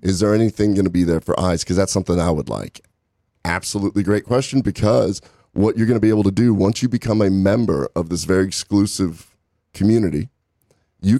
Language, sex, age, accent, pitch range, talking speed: English, male, 30-49, American, 85-105 Hz, 205 wpm